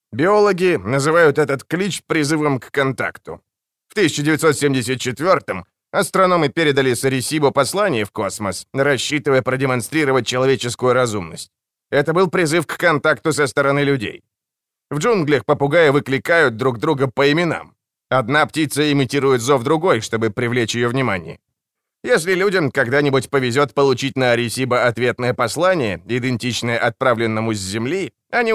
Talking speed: 120 wpm